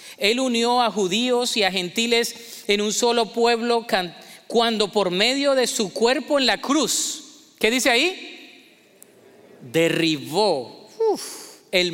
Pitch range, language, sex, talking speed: 185-240 Hz, Spanish, male, 125 wpm